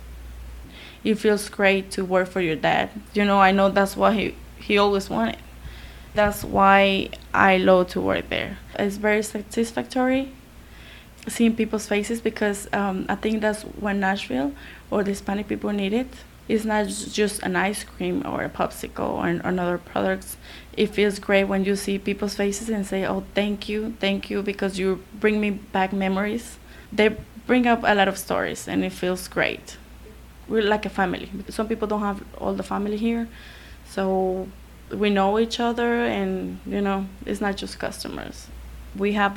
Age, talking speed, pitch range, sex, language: 20-39, 175 wpm, 190-210 Hz, female, English